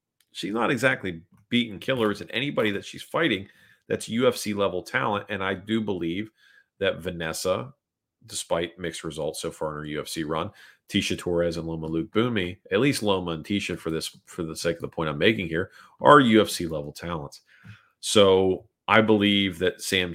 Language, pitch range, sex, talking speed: English, 85-105 Hz, male, 180 wpm